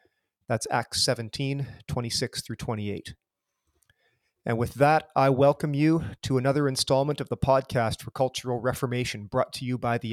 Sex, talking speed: male, 155 wpm